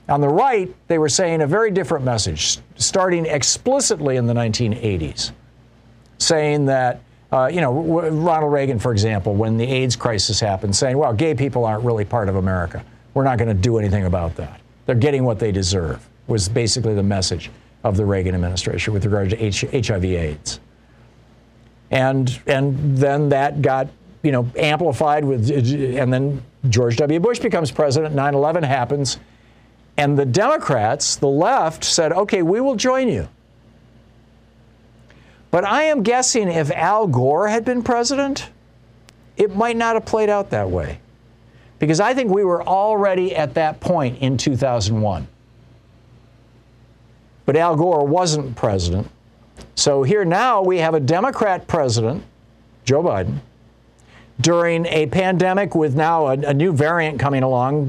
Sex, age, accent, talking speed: male, 50-69, American, 150 wpm